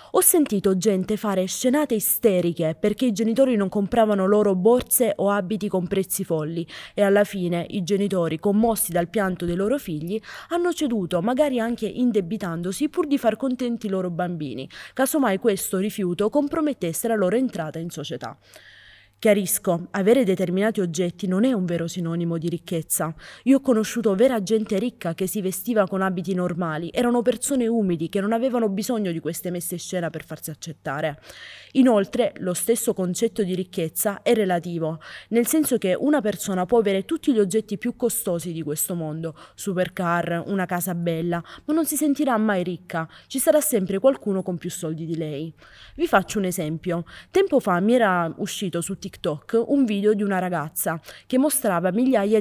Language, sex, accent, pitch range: Italian, female, native, 175-230 Hz